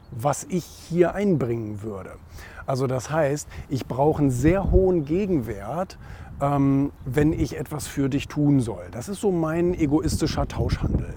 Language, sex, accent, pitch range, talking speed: German, male, German, 120-150 Hz, 150 wpm